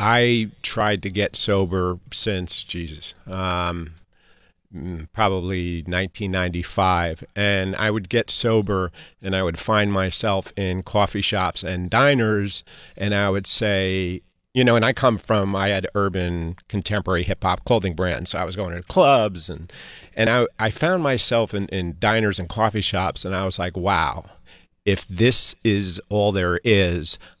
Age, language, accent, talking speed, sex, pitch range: 40-59, English, American, 155 wpm, male, 90-105 Hz